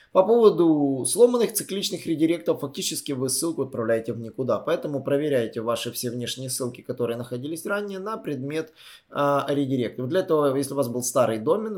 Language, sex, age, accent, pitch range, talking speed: Russian, male, 20-39, native, 125-150 Hz, 165 wpm